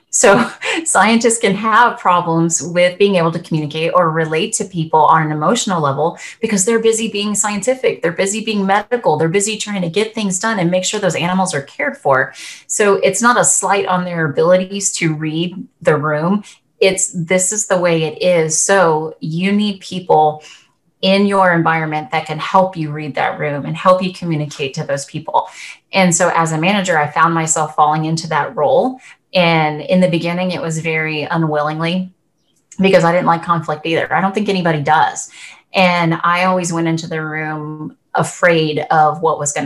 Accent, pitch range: American, 155-190 Hz